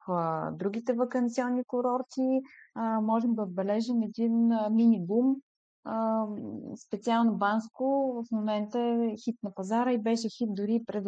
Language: Bulgarian